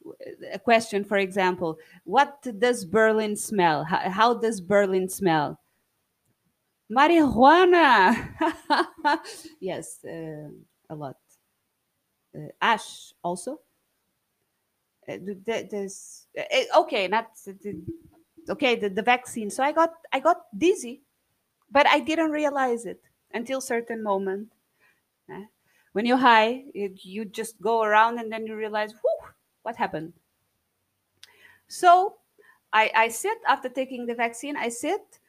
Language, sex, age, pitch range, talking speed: English, female, 30-49, 195-285 Hz, 120 wpm